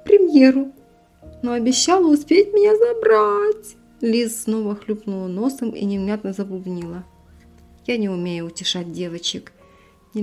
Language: Russian